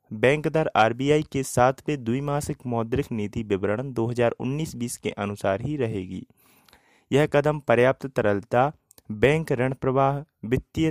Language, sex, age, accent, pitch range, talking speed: Hindi, male, 30-49, native, 110-145 Hz, 125 wpm